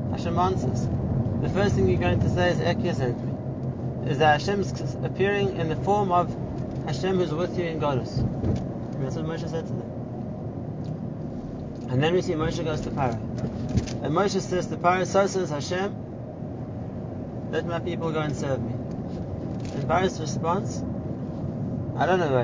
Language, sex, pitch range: English, male, 115-165 Hz